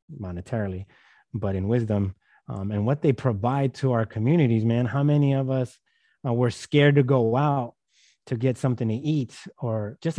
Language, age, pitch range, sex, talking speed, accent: English, 30-49, 105-135 Hz, male, 175 wpm, American